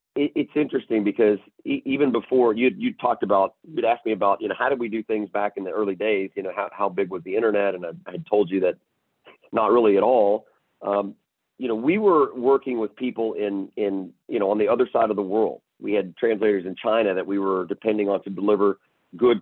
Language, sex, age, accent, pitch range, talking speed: English, male, 40-59, American, 100-135 Hz, 230 wpm